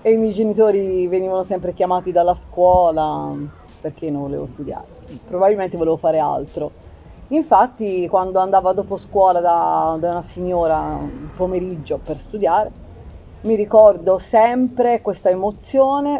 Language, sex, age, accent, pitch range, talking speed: Italian, female, 30-49, native, 170-210 Hz, 130 wpm